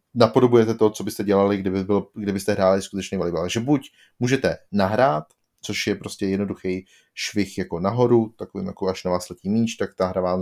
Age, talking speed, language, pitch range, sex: 30-49, 190 wpm, Czech, 95-115 Hz, male